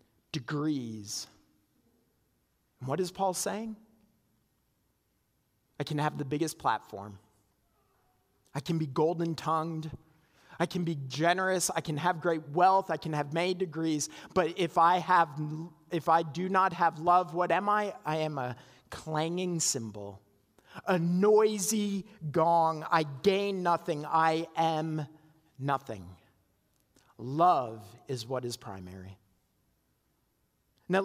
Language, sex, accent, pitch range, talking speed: English, male, American, 145-195 Hz, 120 wpm